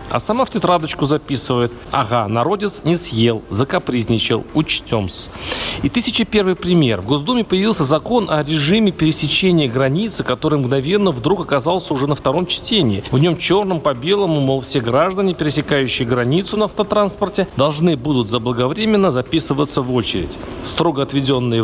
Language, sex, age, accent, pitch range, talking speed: Russian, male, 40-59, native, 130-180 Hz, 140 wpm